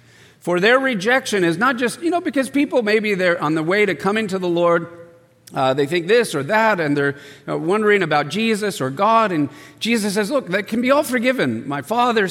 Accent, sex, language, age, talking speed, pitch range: American, male, English, 50-69, 215 wpm, 145-210 Hz